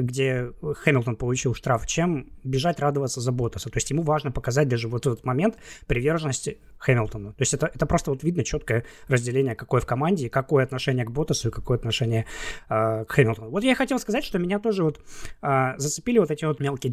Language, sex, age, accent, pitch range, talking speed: Russian, male, 20-39, native, 125-160 Hz, 200 wpm